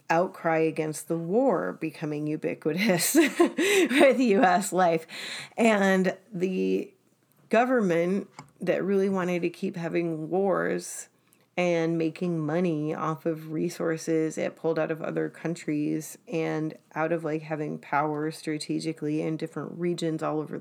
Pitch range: 160-200 Hz